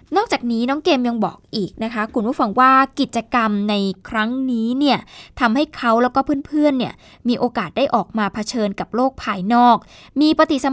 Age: 10-29